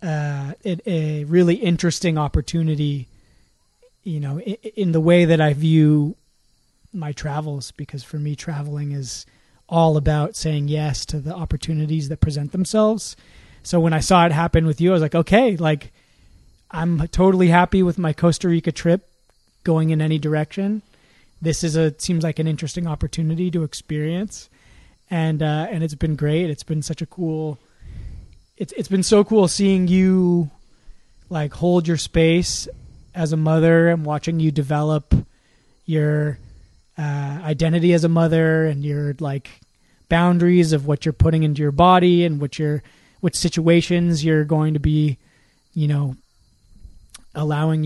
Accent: American